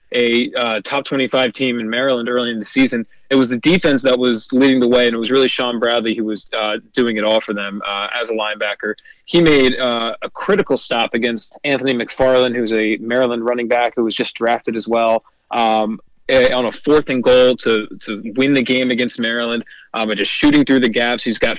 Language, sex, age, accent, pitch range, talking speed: English, male, 30-49, American, 115-135 Hz, 220 wpm